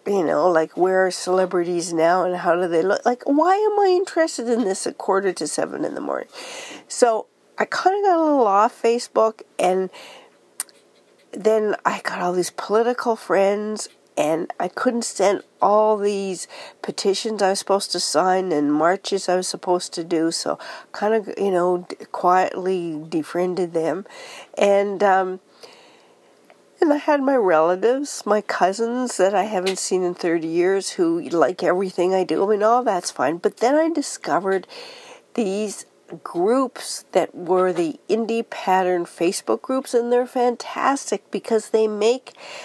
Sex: female